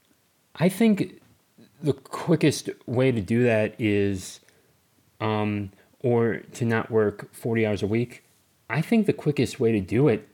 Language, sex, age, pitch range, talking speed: English, male, 30-49, 100-130 Hz, 150 wpm